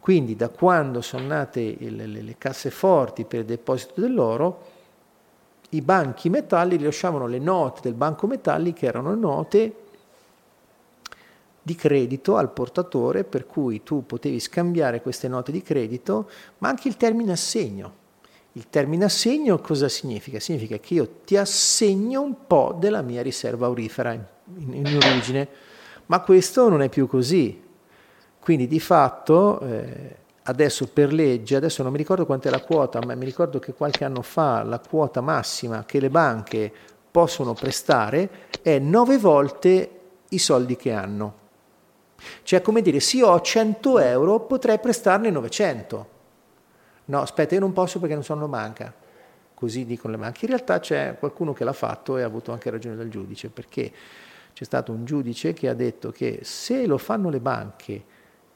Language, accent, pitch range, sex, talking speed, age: Italian, native, 125-185 Hz, male, 160 wpm, 50-69